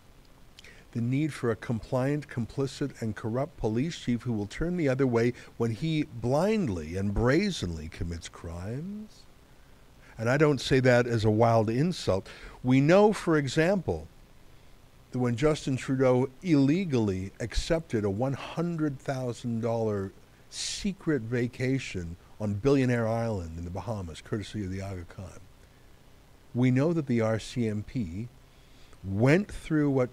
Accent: American